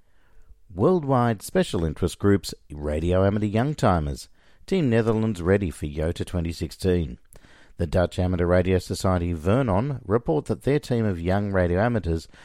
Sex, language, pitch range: male, English, 85-115 Hz